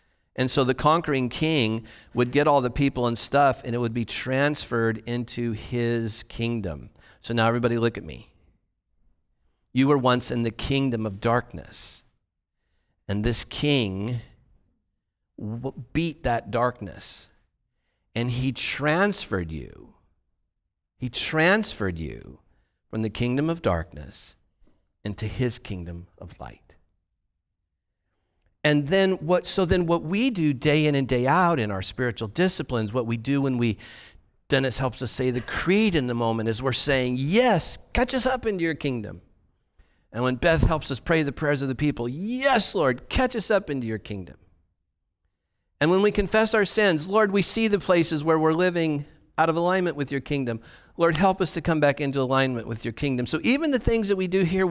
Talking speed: 170 wpm